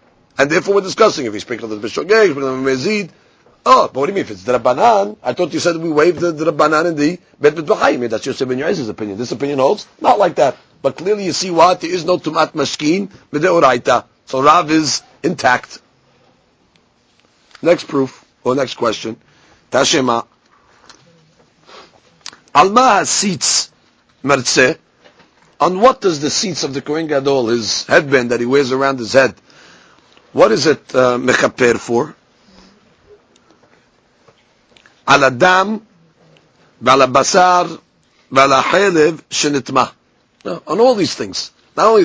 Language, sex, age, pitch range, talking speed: English, male, 40-59, 125-165 Hz, 145 wpm